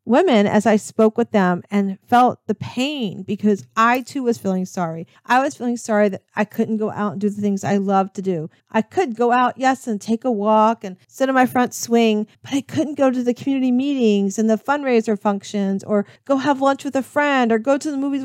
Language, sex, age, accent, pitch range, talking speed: English, female, 40-59, American, 205-255 Hz, 235 wpm